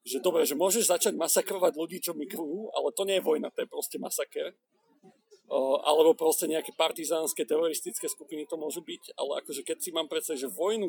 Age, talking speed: 40-59, 195 wpm